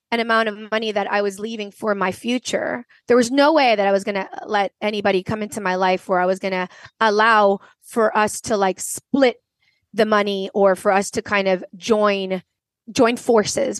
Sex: female